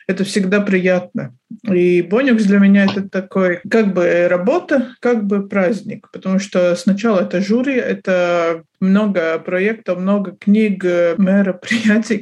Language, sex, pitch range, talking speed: Russian, male, 180-220 Hz, 130 wpm